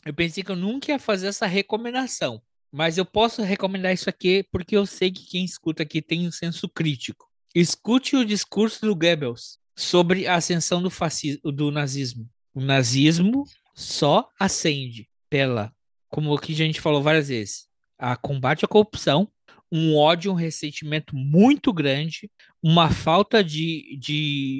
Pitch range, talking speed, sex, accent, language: 140-185 Hz, 155 wpm, male, Brazilian, Portuguese